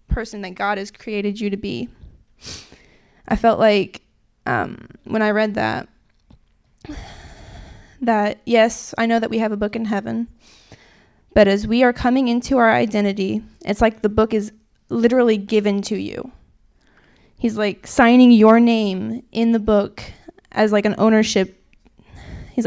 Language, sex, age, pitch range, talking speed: English, female, 20-39, 205-235 Hz, 150 wpm